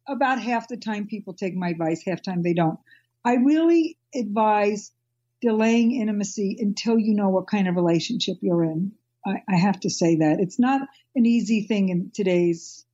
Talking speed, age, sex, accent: 185 wpm, 50-69, female, American